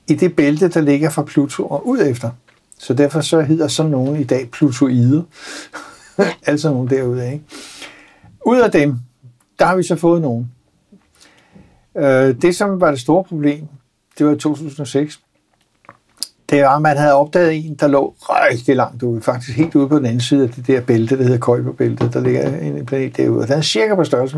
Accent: native